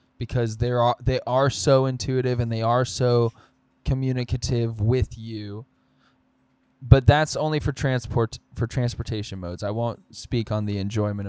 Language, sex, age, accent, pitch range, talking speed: English, male, 10-29, American, 110-135 Hz, 150 wpm